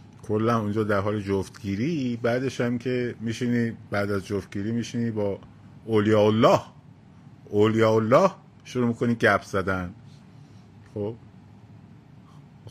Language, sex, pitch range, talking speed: Persian, male, 100-125 Hz, 115 wpm